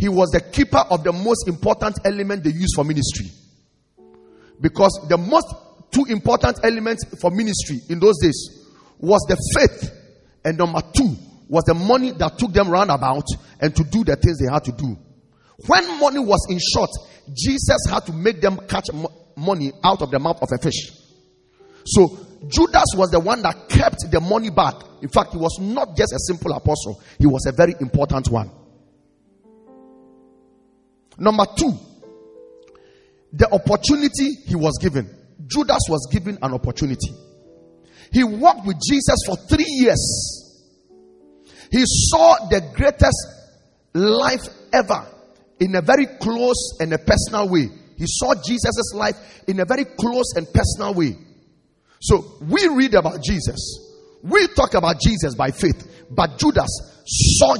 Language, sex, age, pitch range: English, male, 40-59, 135-225 Hz